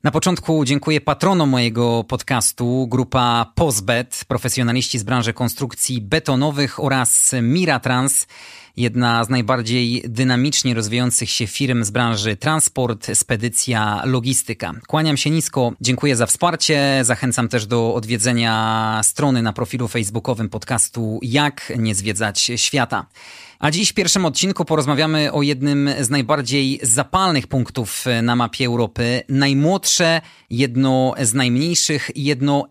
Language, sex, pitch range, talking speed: Polish, male, 120-140 Hz, 120 wpm